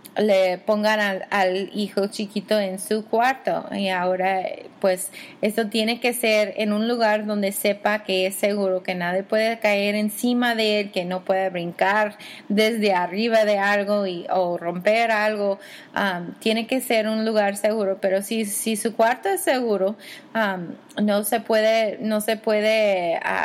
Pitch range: 200-225 Hz